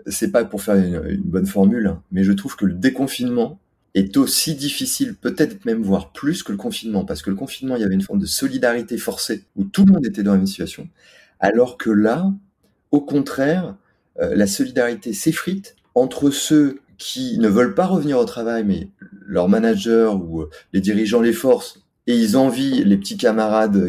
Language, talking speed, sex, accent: French, 195 wpm, male, French